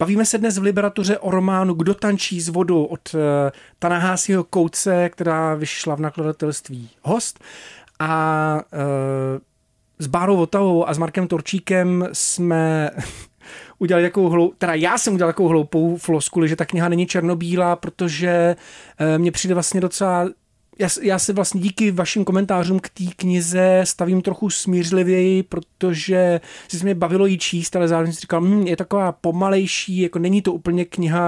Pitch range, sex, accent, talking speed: 160-180 Hz, male, native, 160 wpm